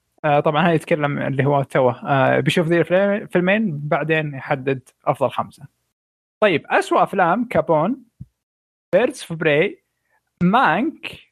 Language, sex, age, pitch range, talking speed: Arabic, male, 20-39, 145-200 Hz, 110 wpm